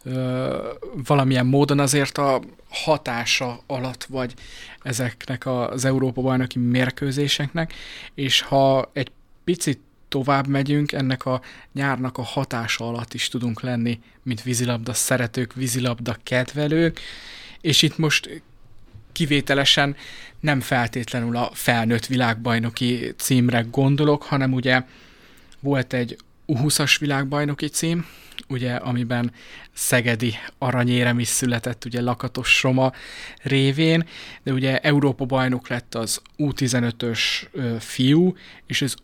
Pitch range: 125-140 Hz